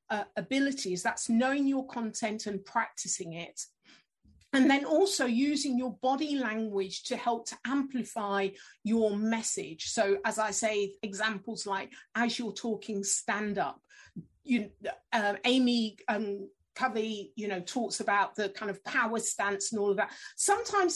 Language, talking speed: English, 150 wpm